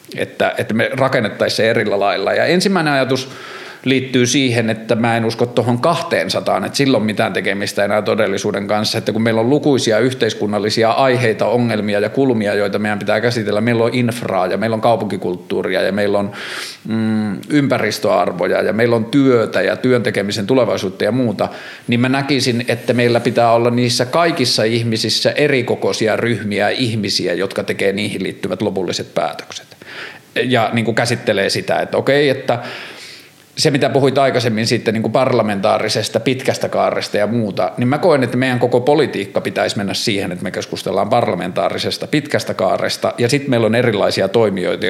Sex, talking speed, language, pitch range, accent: male, 155 wpm, Finnish, 110-130 Hz, native